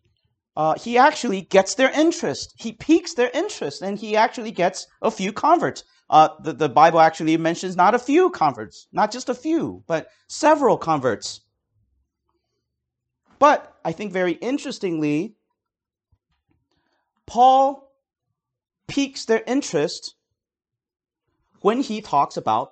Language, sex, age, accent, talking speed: English, male, 40-59, American, 125 wpm